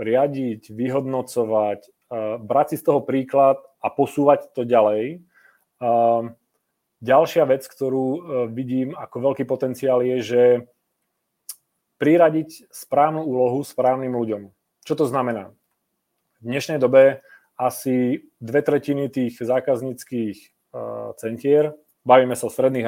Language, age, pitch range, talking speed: Czech, 30-49, 120-135 Hz, 110 wpm